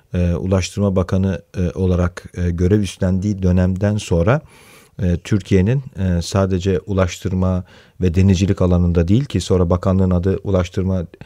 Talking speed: 130 wpm